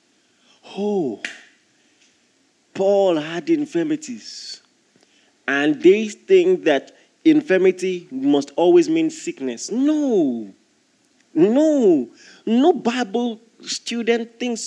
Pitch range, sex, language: 190-315 Hz, male, English